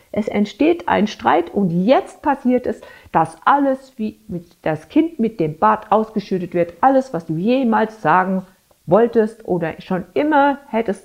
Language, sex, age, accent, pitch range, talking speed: German, female, 50-69, German, 175-220 Hz, 150 wpm